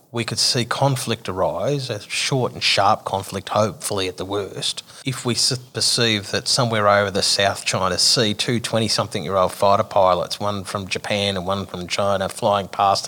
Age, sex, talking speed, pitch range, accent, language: 30-49, male, 175 wpm, 95-120 Hz, Australian, English